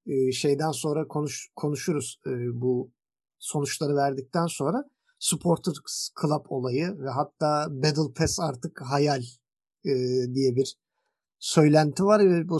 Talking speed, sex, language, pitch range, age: 120 wpm, male, Turkish, 135-180 Hz, 50-69